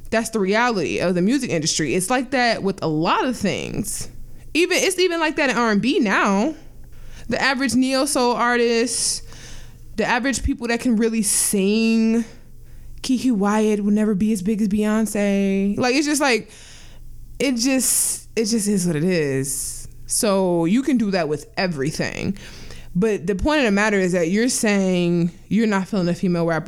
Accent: American